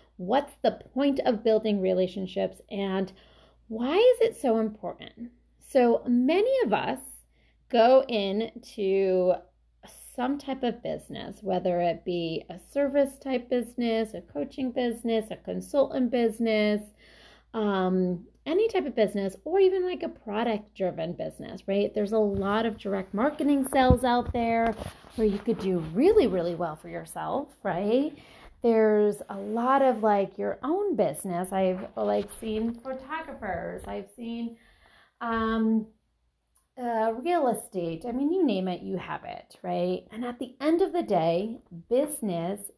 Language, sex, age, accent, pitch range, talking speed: English, female, 30-49, American, 185-255 Hz, 145 wpm